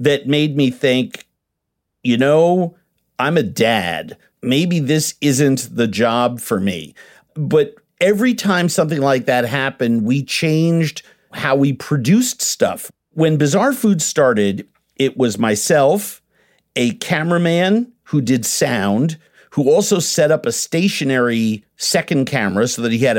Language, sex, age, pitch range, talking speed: English, male, 50-69, 130-180 Hz, 135 wpm